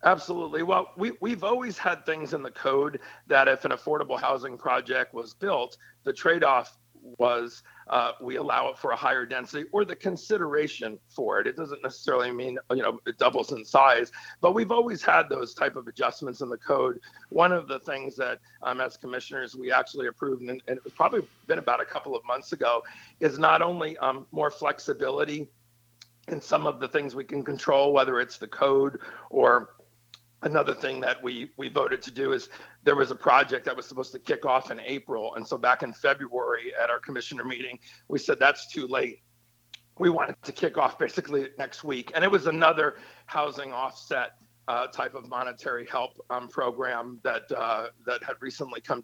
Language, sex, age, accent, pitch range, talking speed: English, male, 50-69, American, 125-180 Hz, 195 wpm